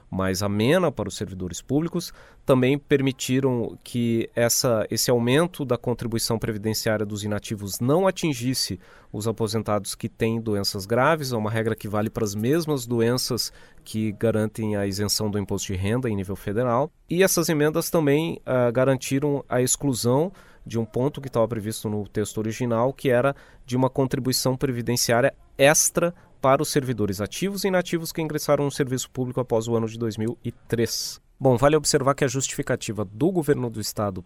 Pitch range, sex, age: 110-135 Hz, male, 30-49